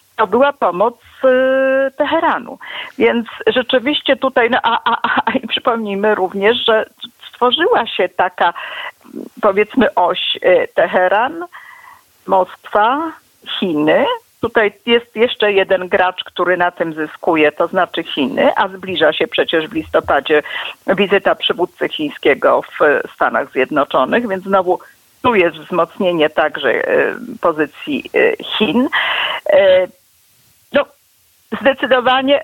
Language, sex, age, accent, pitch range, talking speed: Polish, female, 50-69, native, 195-285 Hz, 100 wpm